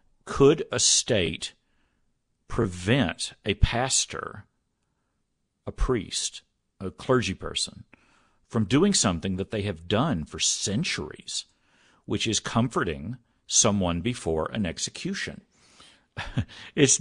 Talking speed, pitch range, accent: 100 wpm, 90-120 Hz, American